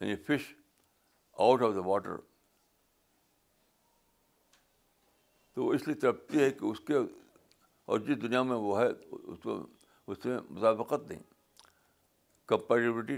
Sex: male